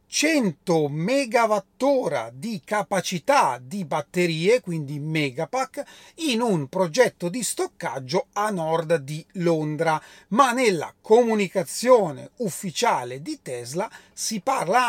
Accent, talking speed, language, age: native, 100 wpm, Italian, 40-59